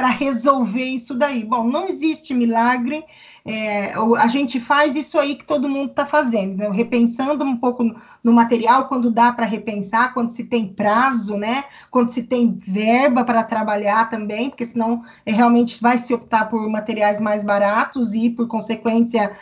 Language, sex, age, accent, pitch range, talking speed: Portuguese, female, 20-39, Brazilian, 225-275 Hz, 165 wpm